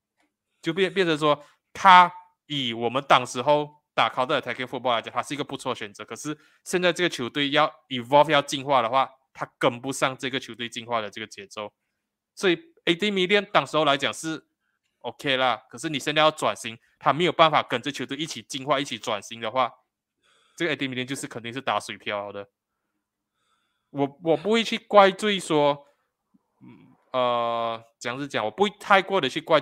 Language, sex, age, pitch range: Chinese, male, 20-39, 120-150 Hz